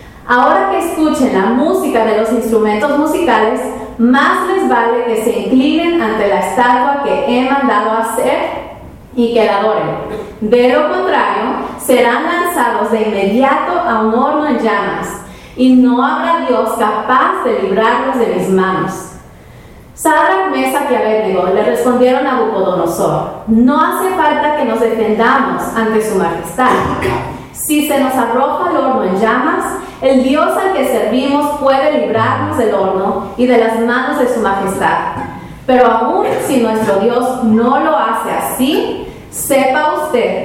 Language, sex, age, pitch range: English, female, 30-49, 220-285 Hz